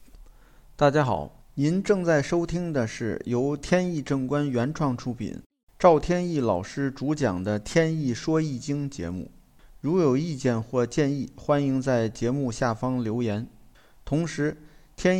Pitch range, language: 125-170 Hz, Chinese